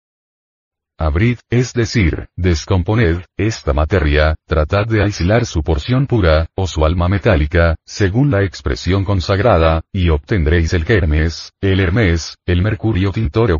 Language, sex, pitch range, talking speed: Spanish, male, 80-105 Hz, 130 wpm